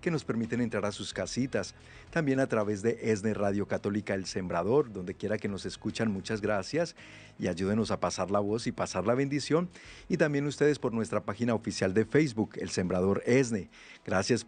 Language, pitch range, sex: Spanish, 105-130 Hz, male